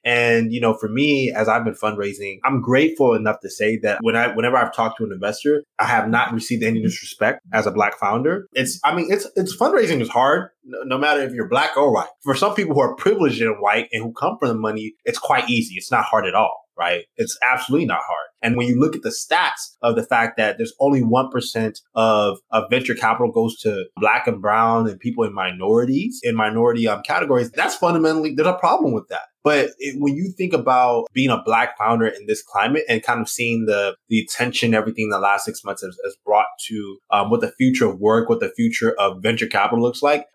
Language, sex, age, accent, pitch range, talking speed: English, male, 20-39, American, 110-150 Hz, 230 wpm